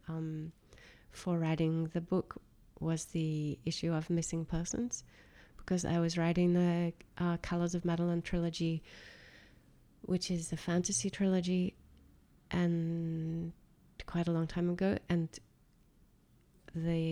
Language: English